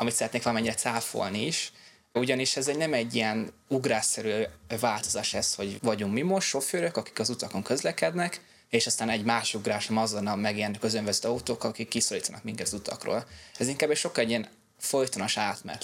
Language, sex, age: Hungarian, male, 20-39